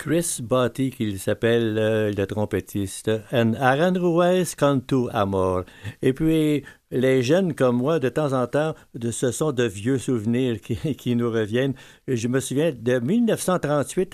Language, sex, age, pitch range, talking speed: French, male, 60-79, 110-135 Hz, 155 wpm